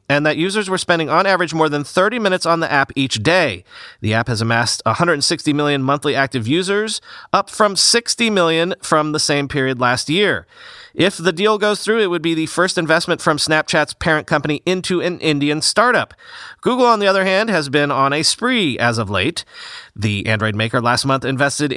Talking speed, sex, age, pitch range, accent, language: 200 wpm, male, 30-49, 135-180 Hz, American, English